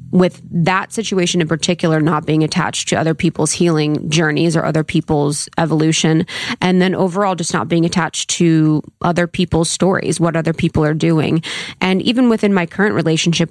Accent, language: American, English